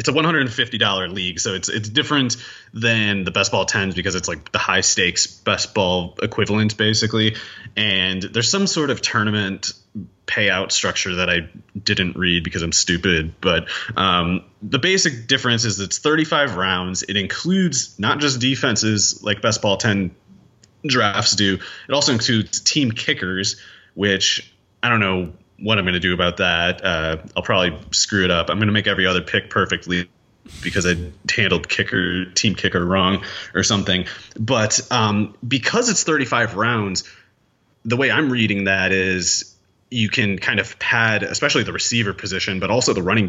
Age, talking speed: 30-49, 175 wpm